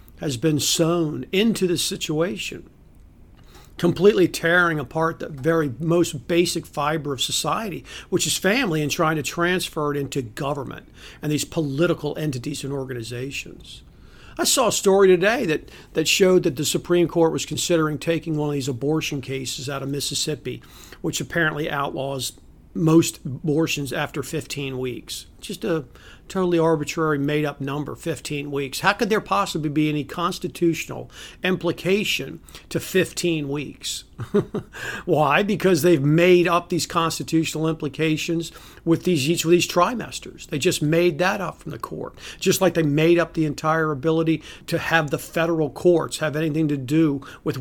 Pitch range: 145-170 Hz